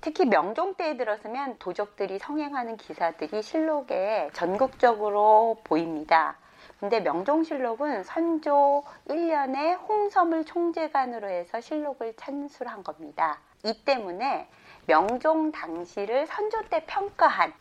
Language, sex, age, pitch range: Korean, female, 40-59, 200-305 Hz